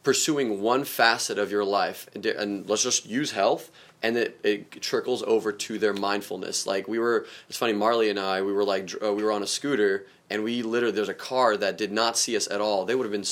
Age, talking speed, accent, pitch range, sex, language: 20-39, 245 wpm, American, 105-125 Hz, male, English